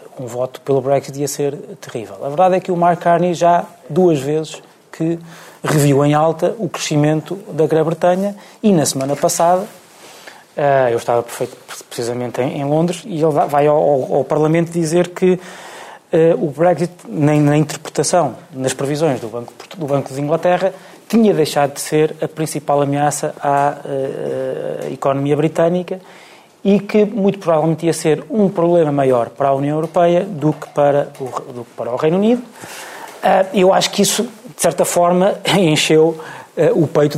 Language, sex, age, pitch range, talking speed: Portuguese, male, 20-39, 145-195 Hz, 150 wpm